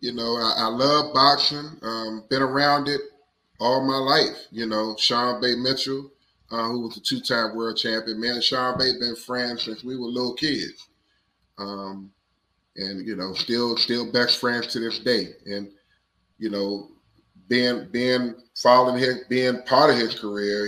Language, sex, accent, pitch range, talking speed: English, male, American, 100-125 Hz, 170 wpm